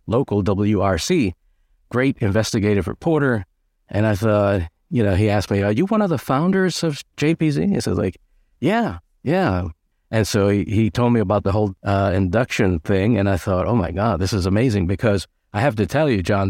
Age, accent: 50-69, American